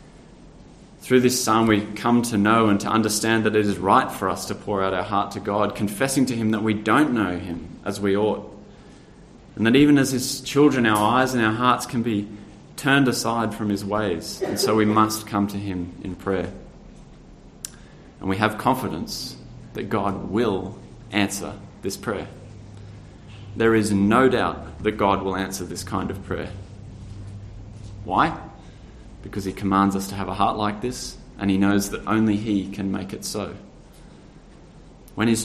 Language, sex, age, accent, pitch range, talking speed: English, male, 20-39, Australian, 95-110 Hz, 180 wpm